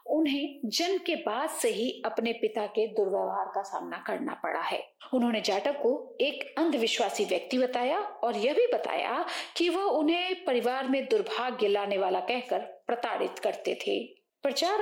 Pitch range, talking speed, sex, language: 215-300 Hz, 160 wpm, female, English